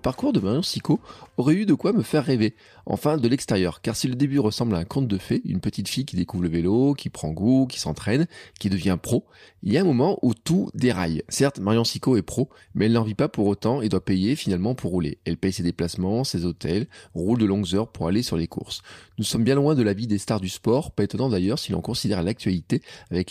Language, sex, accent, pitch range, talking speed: French, male, French, 100-130 Hz, 255 wpm